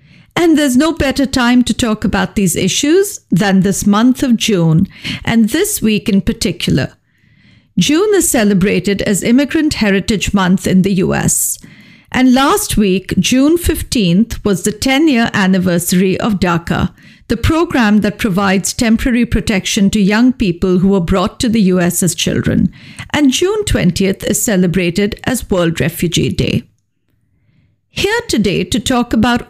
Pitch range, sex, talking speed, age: 185-255 Hz, female, 145 wpm, 50-69